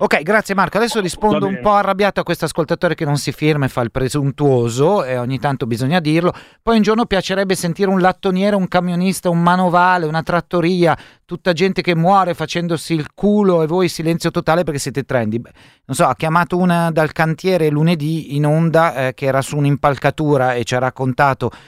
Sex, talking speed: male, 195 wpm